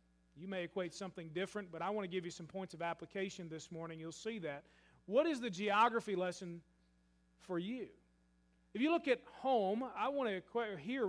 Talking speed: 200 wpm